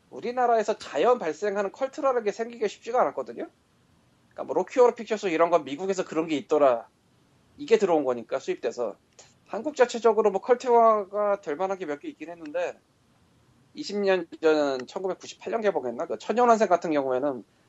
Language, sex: Korean, male